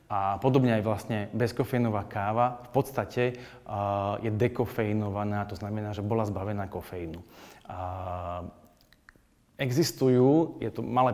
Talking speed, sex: 120 wpm, male